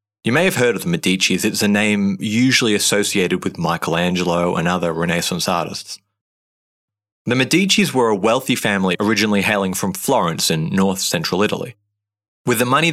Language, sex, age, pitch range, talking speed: English, male, 30-49, 95-110 Hz, 165 wpm